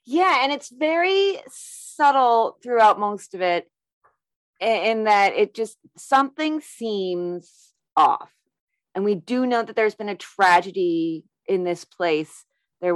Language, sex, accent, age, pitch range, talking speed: English, female, American, 30-49, 170-240 Hz, 135 wpm